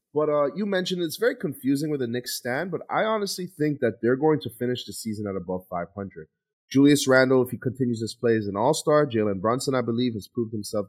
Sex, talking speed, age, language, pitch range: male, 230 wpm, 30-49, English, 105-150 Hz